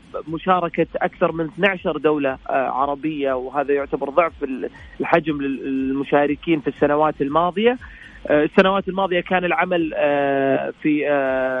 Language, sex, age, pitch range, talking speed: Arabic, male, 30-49, 145-175 Hz, 100 wpm